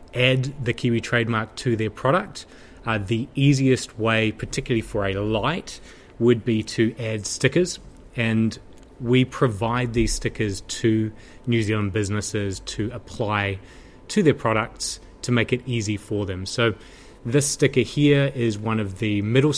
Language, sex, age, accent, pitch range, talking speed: English, male, 20-39, Australian, 100-120 Hz, 150 wpm